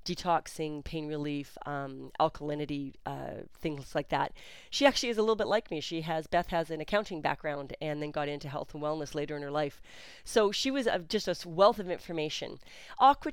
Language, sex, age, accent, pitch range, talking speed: English, female, 40-59, American, 150-200 Hz, 205 wpm